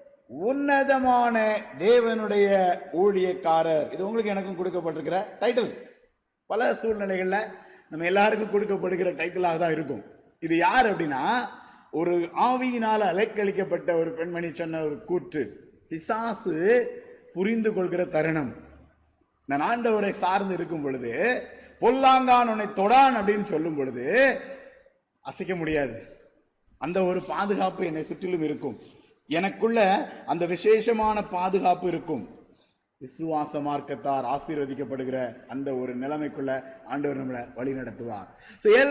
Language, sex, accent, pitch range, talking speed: Tamil, male, native, 155-215 Hz, 95 wpm